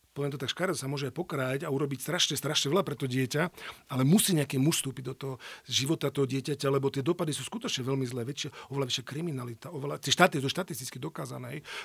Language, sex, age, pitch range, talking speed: Slovak, male, 40-59, 135-165 Hz, 215 wpm